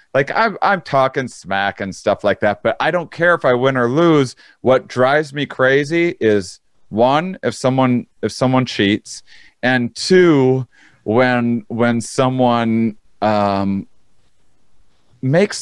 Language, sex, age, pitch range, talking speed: English, male, 30-49, 110-150 Hz, 140 wpm